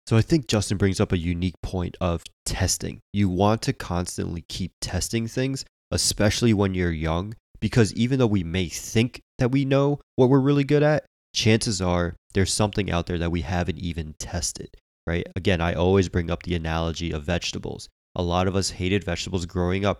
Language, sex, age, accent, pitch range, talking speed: English, male, 20-39, American, 85-105 Hz, 195 wpm